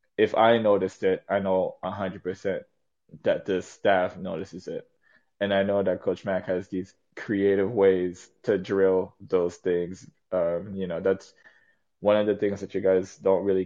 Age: 20-39